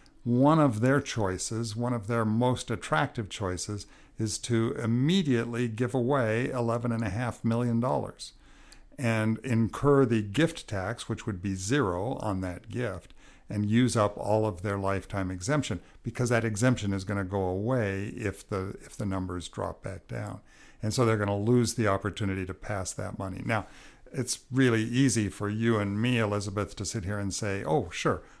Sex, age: male, 60-79